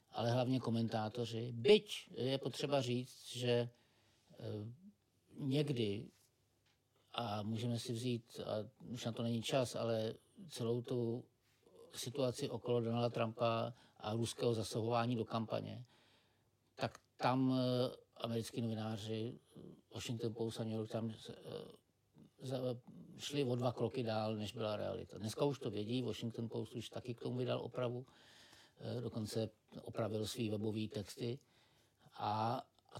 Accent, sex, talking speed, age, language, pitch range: native, male, 125 wpm, 50-69, Czech, 115-125 Hz